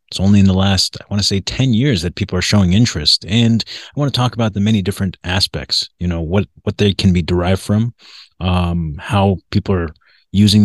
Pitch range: 90-105 Hz